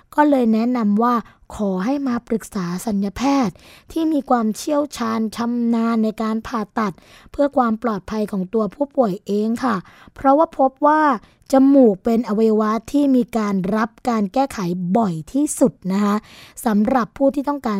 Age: 20-39